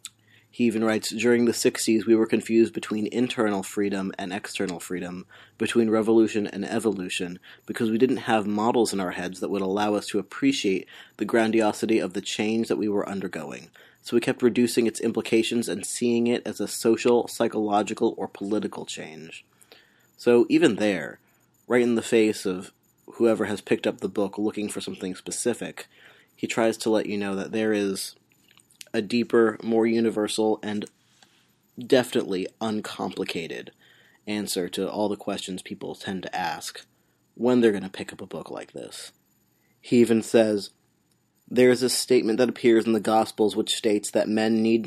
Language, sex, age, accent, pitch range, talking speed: English, male, 30-49, American, 105-115 Hz, 170 wpm